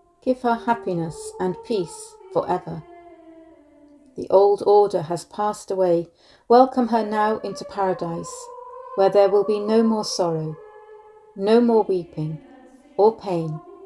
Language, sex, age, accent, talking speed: English, female, 40-59, British, 125 wpm